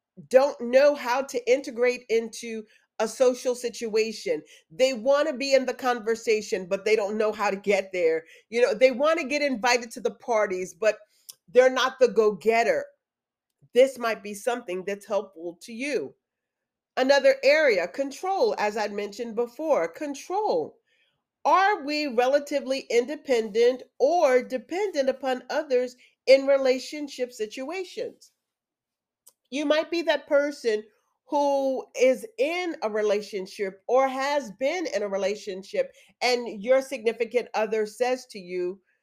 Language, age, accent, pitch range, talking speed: English, 40-59, American, 215-285 Hz, 135 wpm